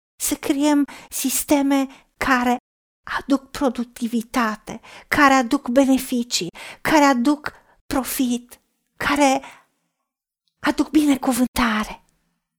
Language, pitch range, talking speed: Romanian, 245-285 Hz, 70 wpm